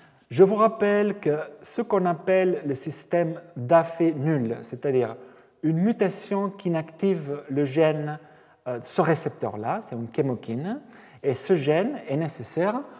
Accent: French